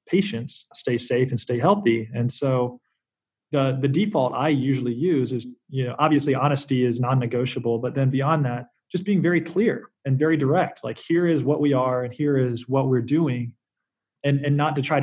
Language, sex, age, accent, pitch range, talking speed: English, male, 20-39, American, 130-155 Hz, 195 wpm